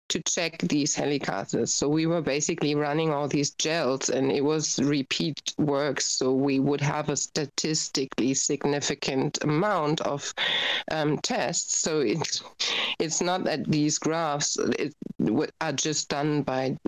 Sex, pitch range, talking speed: female, 145-170 Hz, 140 wpm